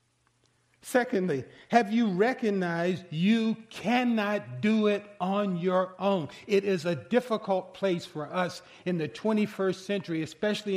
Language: English